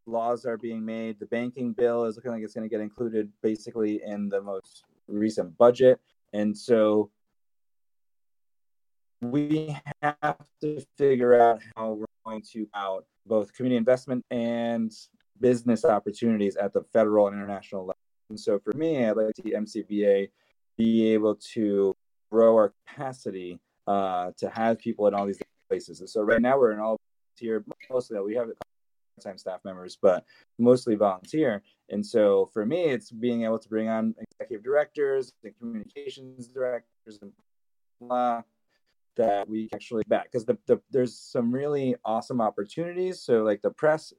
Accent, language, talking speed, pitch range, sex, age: American, English, 160 wpm, 105-125 Hz, male, 30-49